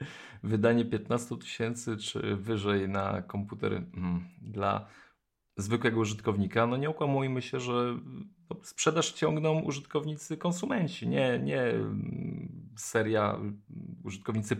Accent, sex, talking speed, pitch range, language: native, male, 100 wpm, 100-120 Hz, Polish